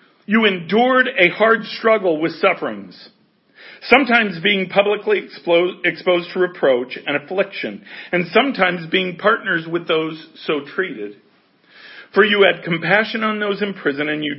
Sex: male